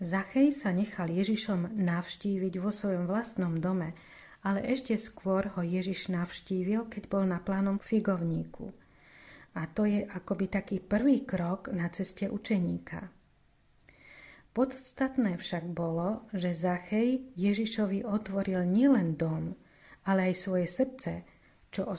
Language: Slovak